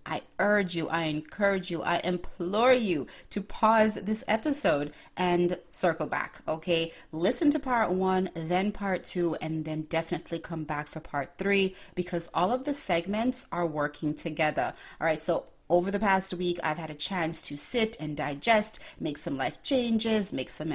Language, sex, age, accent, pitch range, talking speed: English, female, 30-49, American, 160-205 Hz, 175 wpm